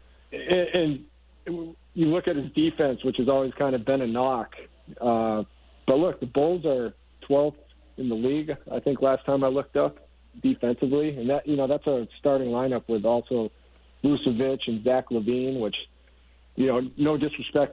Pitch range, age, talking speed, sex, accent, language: 110-135 Hz, 50-69, 175 wpm, male, American, English